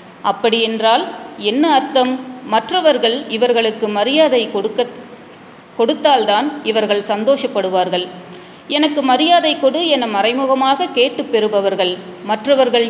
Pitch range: 210-280 Hz